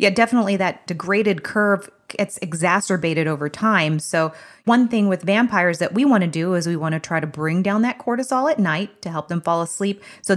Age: 30-49